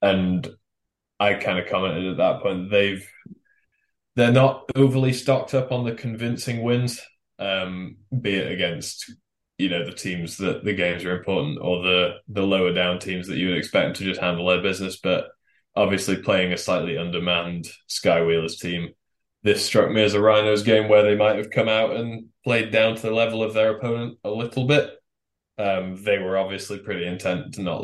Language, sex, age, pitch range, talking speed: English, male, 10-29, 90-110 Hz, 190 wpm